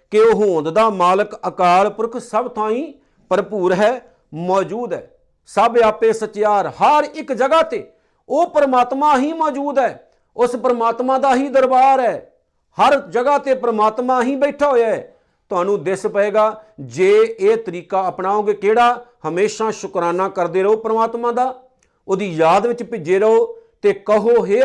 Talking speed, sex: 150 wpm, male